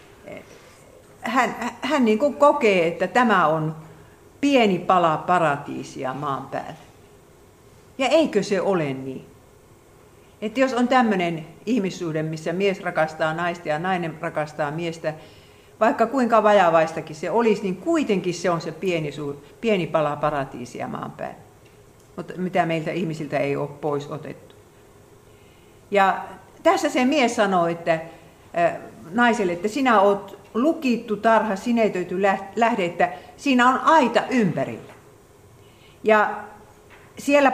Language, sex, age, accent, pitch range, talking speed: Finnish, female, 50-69, native, 155-220 Hz, 125 wpm